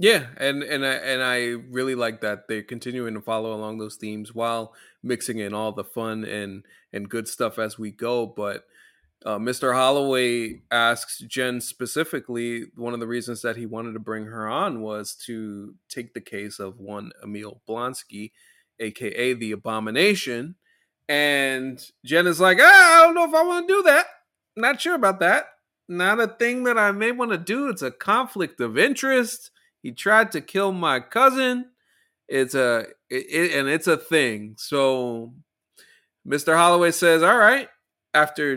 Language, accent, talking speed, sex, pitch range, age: English, American, 170 wpm, male, 110-160 Hz, 30-49